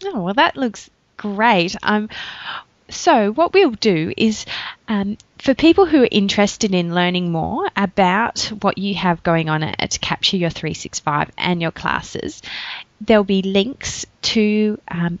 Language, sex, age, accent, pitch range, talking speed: English, female, 20-39, Australian, 175-230 Hz, 150 wpm